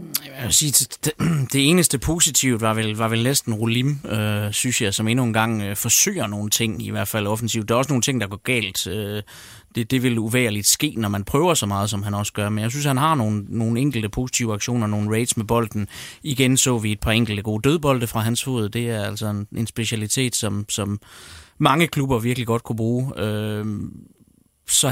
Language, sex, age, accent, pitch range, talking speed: Danish, male, 30-49, native, 105-125 Hz, 215 wpm